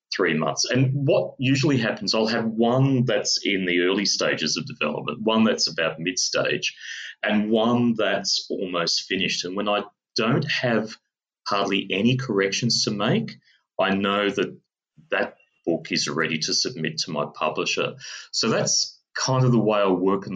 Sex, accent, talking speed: male, Australian, 170 wpm